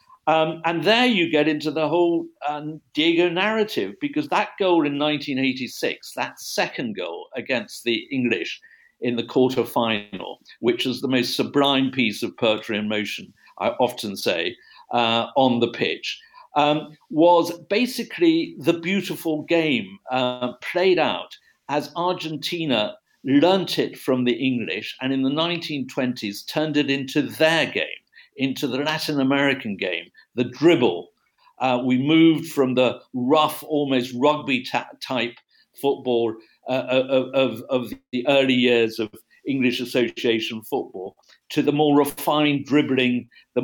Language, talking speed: English, 140 wpm